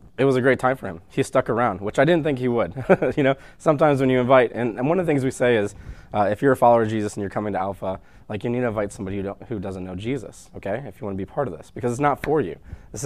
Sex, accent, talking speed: male, American, 315 wpm